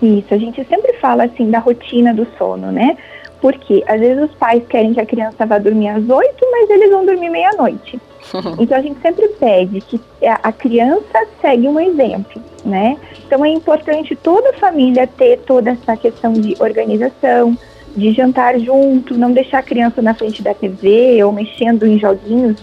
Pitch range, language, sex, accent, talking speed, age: 210-285 Hz, Portuguese, female, Brazilian, 185 wpm, 30-49